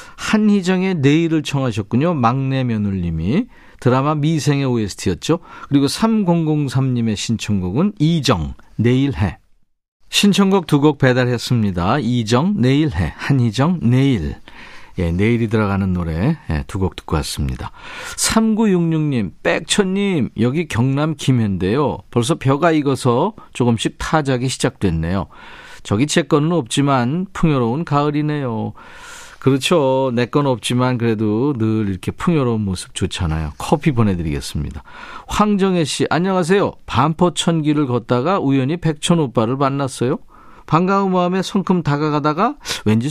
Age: 50-69